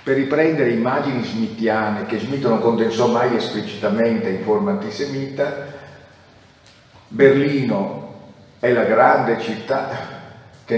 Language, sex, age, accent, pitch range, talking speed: Italian, male, 50-69, native, 110-145 Hz, 105 wpm